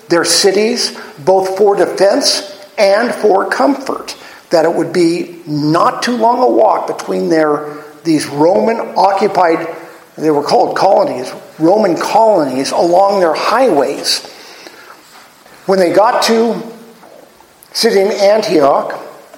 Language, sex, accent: English, male, American